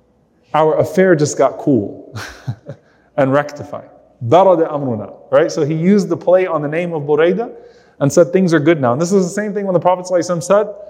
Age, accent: 30-49, American